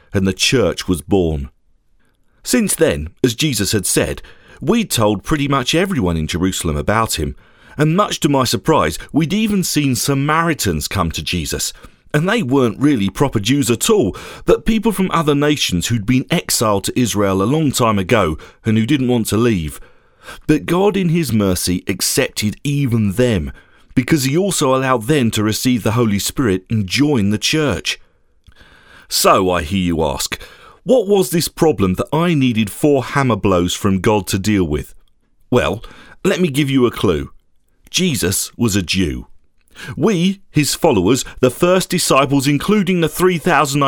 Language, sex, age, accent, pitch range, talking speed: English, male, 40-59, British, 95-155 Hz, 165 wpm